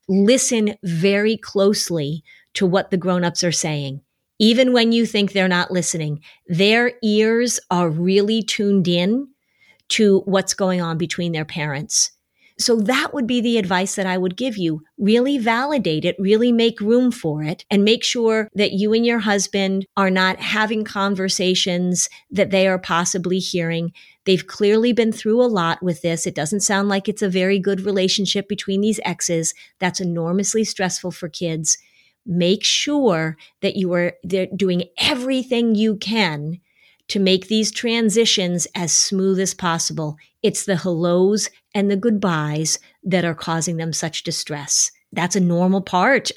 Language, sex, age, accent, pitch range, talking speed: English, female, 40-59, American, 175-215 Hz, 160 wpm